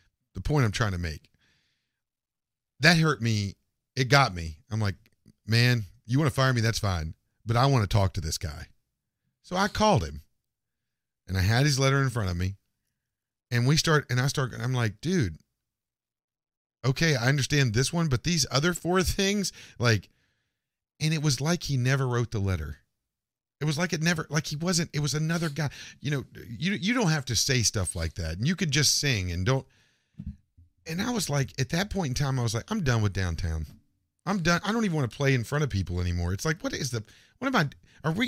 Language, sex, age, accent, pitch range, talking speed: English, male, 40-59, American, 105-150 Hz, 220 wpm